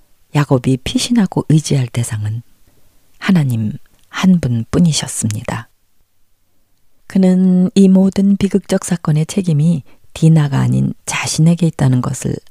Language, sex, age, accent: Korean, female, 40-59, native